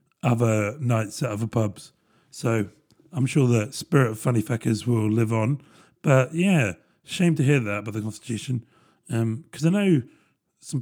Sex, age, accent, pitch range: male, 40-59, British, 115-155 Hz